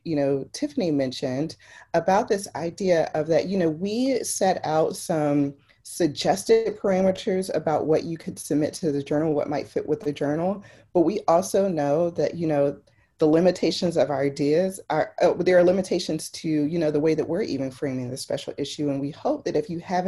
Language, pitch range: English, 140-170 Hz